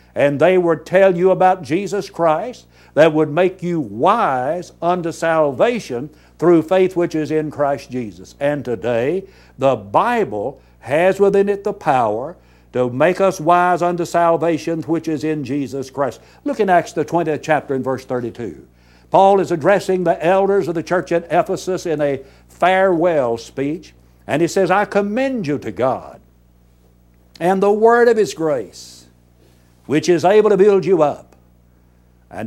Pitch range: 120-180 Hz